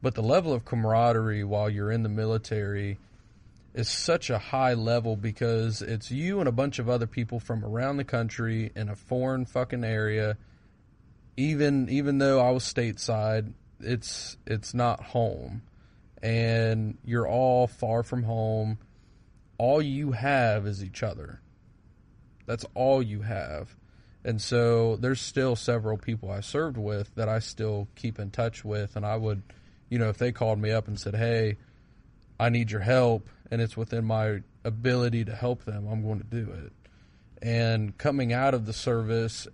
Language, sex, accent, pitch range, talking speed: English, male, American, 105-120 Hz, 170 wpm